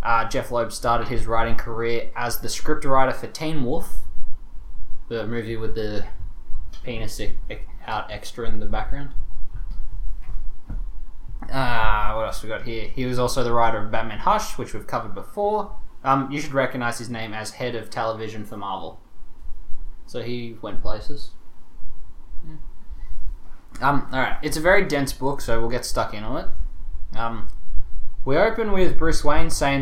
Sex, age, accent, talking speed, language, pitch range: male, 20-39, Australian, 160 wpm, English, 105-130 Hz